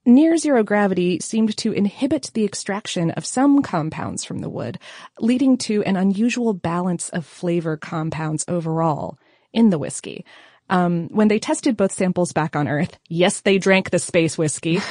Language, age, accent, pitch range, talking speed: English, 30-49, American, 175-225 Hz, 160 wpm